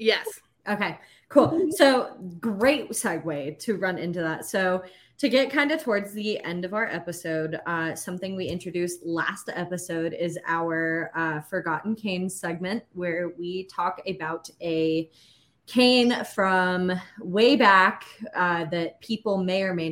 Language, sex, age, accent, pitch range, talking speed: English, female, 20-39, American, 150-185 Hz, 145 wpm